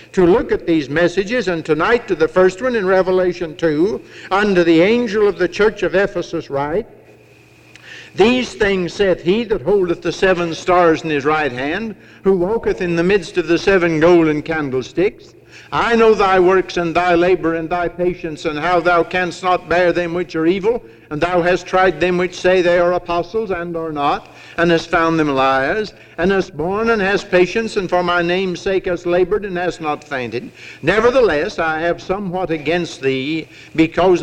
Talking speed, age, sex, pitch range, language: 190 wpm, 60-79, male, 170-200 Hz, English